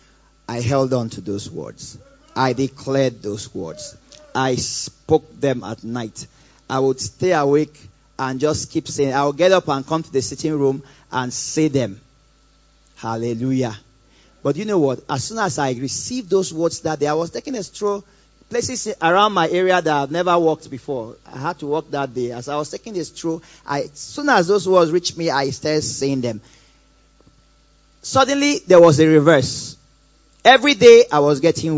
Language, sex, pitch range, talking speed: English, male, 130-165 Hz, 185 wpm